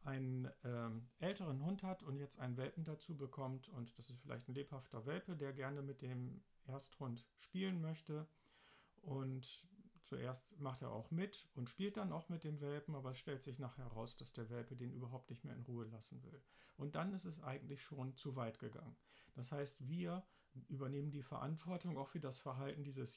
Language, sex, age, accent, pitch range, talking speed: German, male, 50-69, German, 130-170 Hz, 195 wpm